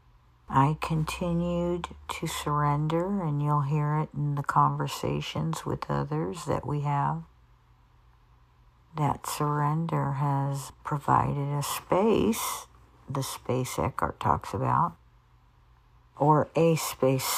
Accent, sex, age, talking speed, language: American, female, 60-79, 105 wpm, English